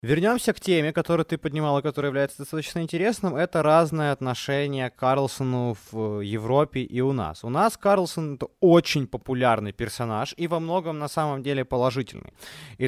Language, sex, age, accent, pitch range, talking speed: Ukrainian, male, 20-39, native, 115-160 Hz, 165 wpm